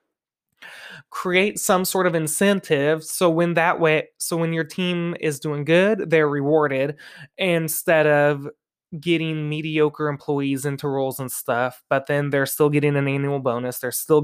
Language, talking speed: English, 155 wpm